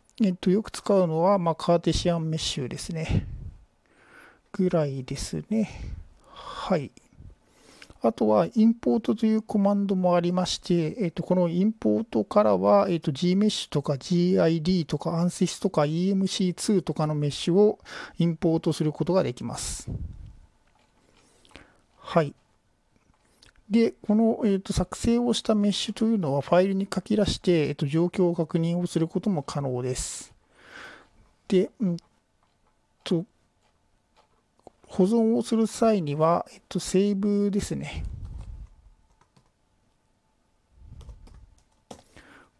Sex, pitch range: male, 155-200 Hz